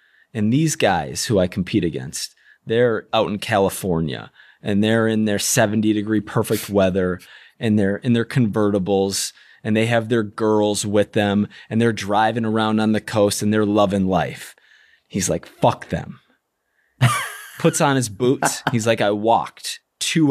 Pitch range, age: 100-115 Hz, 20-39